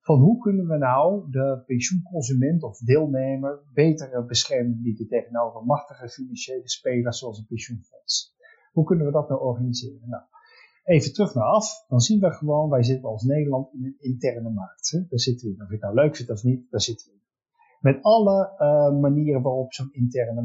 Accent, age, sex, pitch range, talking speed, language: Dutch, 50-69, male, 120-160 Hz, 200 wpm, Dutch